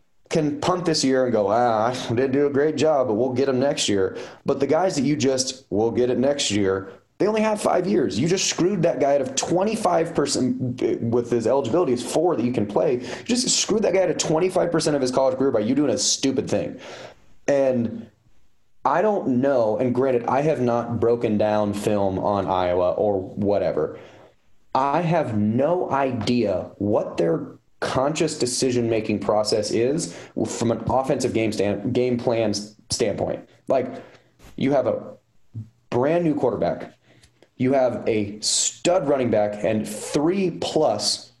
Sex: male